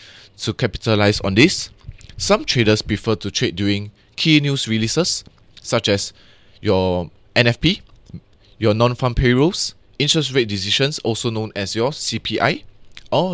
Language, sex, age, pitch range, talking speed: English, male, 20-39, 100-120 Hz, 130 wpm